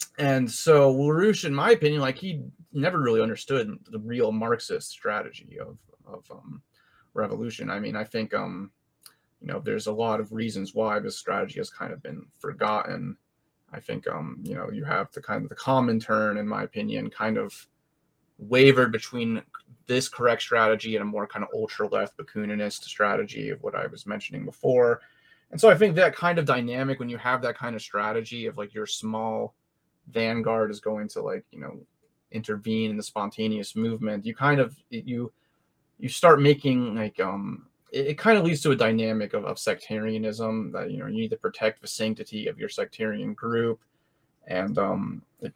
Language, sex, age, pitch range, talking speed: English, male, 30-49, 110-155 Hz, 190 wpm